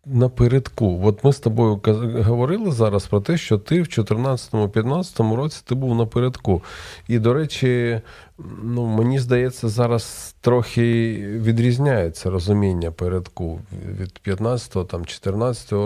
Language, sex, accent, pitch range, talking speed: Ukrainian, male, native, 95-115 Hz, 125 wpm